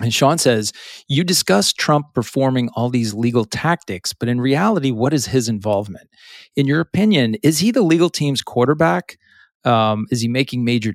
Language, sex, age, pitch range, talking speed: English, male, 40-59, 110-145 Hz, 175 wpm